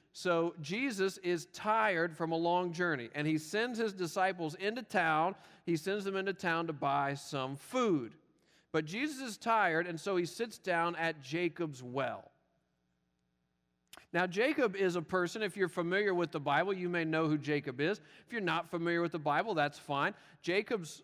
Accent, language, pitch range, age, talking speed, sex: American, English, 150-190 Hz, 40-59, 180 wpm, male